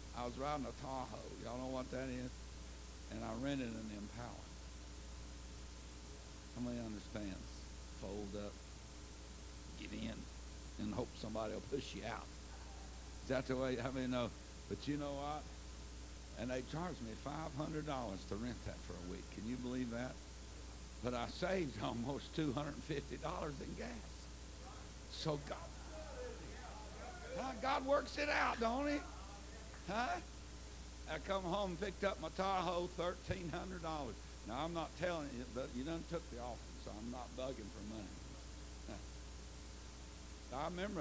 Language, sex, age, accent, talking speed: English, male, 60-79, American, 160 wpm